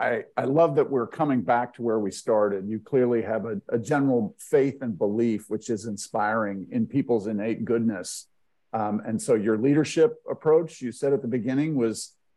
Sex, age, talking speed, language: male, 50-69, 190 wpm, English